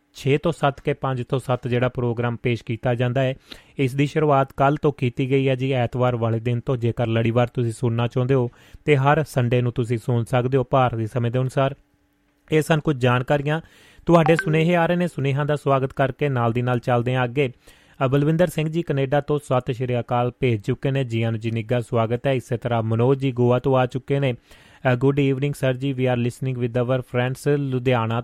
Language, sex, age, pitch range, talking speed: Punjabi, male, 30-49, 120-140 Hz, 190 wpm